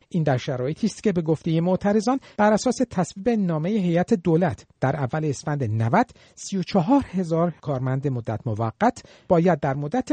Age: 50-69